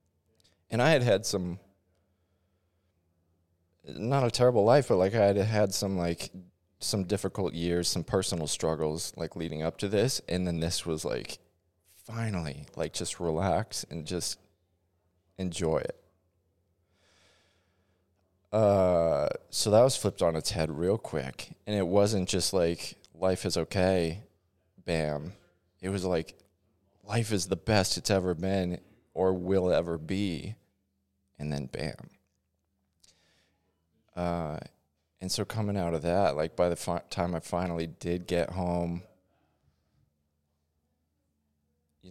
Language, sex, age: English, male, 20-39